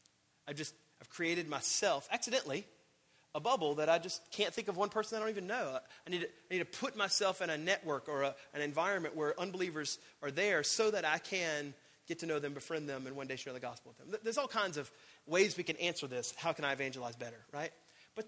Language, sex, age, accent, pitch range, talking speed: English, male, 30-49, American, 125-170 Hz, 225 wpm